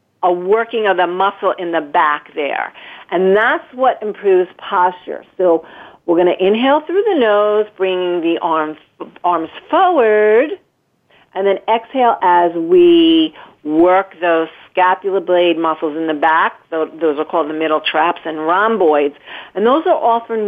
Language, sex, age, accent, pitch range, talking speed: English, female, 50-69, American, 165-225 Hz, 155 wpm